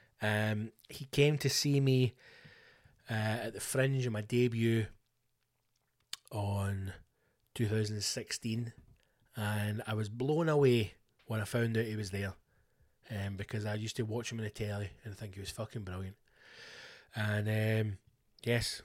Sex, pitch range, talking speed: male, 110-140 Hz, 150 wpm